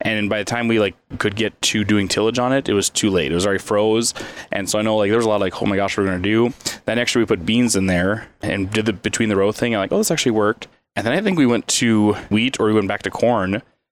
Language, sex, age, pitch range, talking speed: English, male, 20-39, 95-115 Hz, 315 wpm